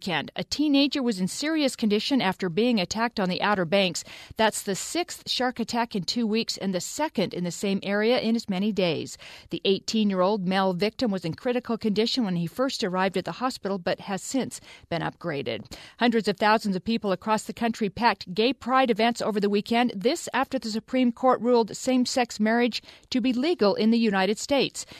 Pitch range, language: 190-240 Hz, English